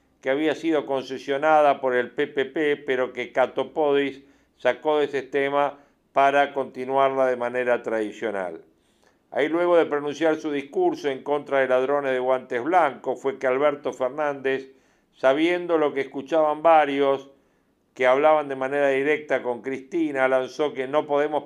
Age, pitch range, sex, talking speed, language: 50-69, 130-150 Hz, male, 145 wpm, Spanish